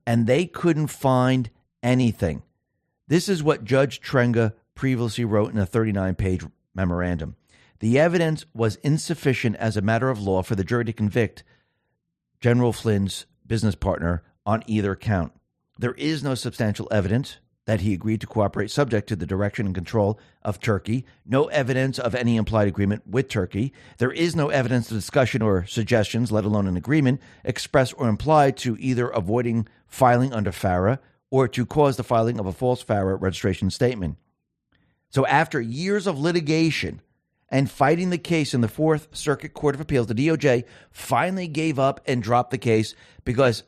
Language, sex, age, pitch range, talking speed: English, male, 50-69, 105-145 Hz, 165 wpm